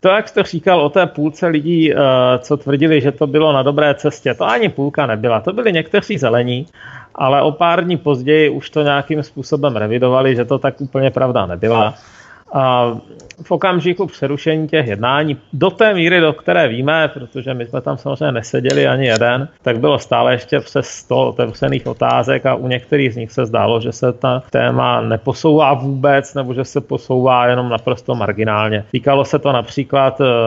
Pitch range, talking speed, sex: 120-145 Hz, 180 wpm, male